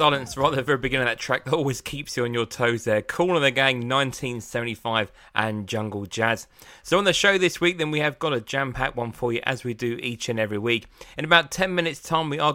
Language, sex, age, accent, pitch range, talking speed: English, male, 20-39, British, 110-145 Hz, 260 wpm